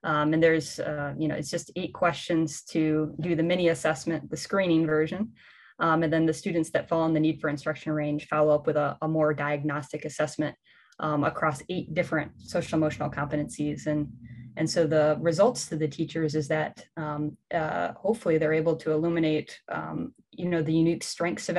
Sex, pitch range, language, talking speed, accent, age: female, 155-170 Hz, English, 195 wpm, American, 20-39